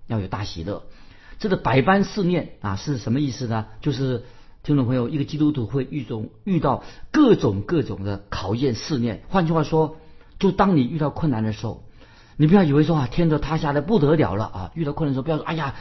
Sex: male